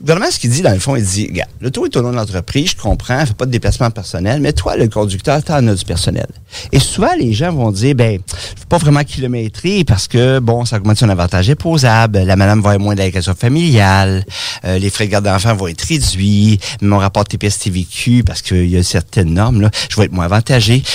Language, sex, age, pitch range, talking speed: French, male, 50-69, 100-135 Hz, 240 wpm